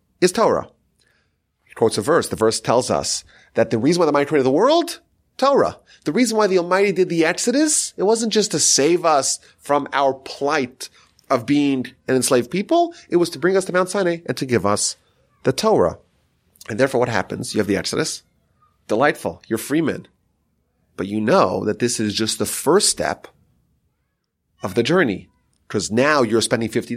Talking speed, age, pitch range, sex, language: 190 wpm, 30-49, 110-185 Hz, male, English